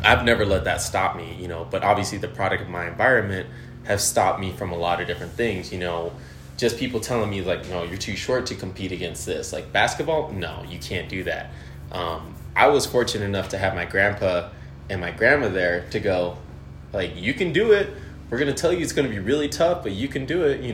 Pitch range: 85-120 Hz